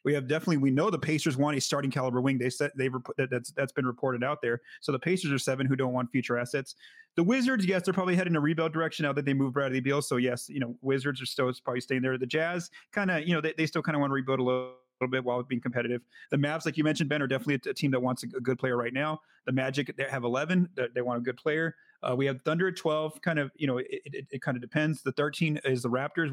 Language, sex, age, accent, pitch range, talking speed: English, male, 30-49, American, 130-160 Hz, 285 wpm